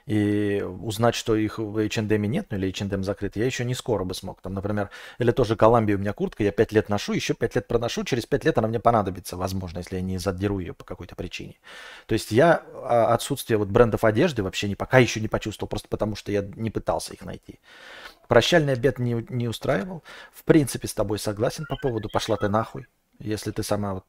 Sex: male